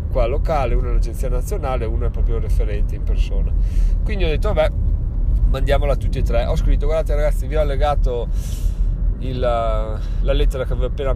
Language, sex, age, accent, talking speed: Italian, male, 30-49, native, 175 wpm